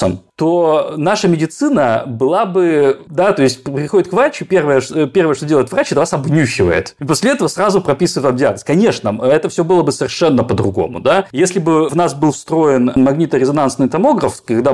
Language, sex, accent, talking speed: Russian, male, native, 170 wpm